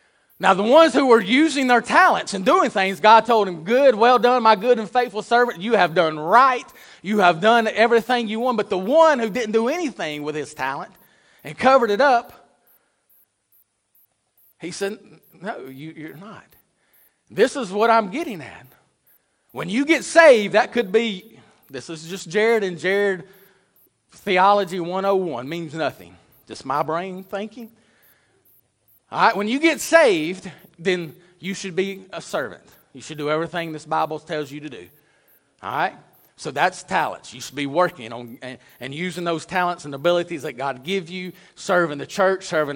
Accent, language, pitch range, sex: American, English, 165-230 Hz, male